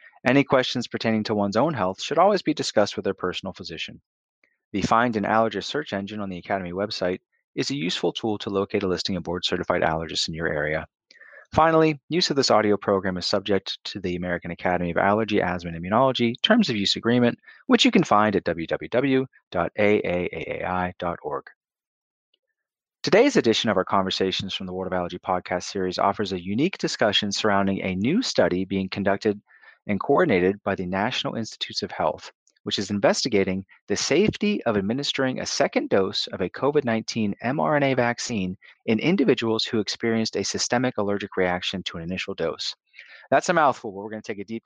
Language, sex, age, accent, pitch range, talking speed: English, male, 30-49, American, 90-115 Hz, 175 wpm